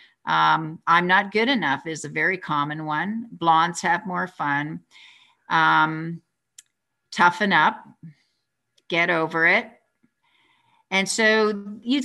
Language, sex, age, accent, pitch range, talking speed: English, female, 50-69, American, 160-220 Hz, 115 wpm